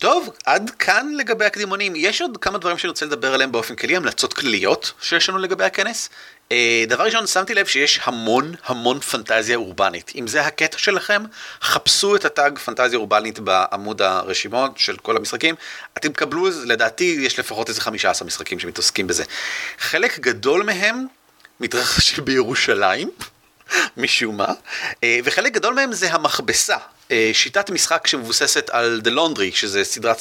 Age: 30-49